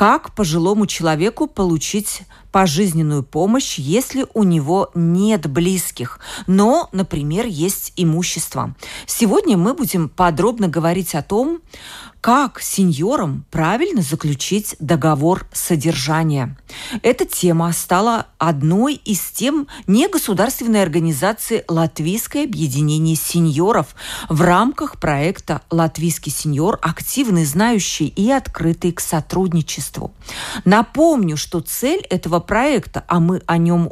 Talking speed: 105 wpm